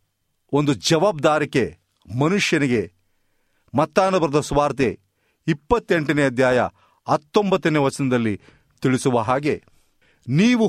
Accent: native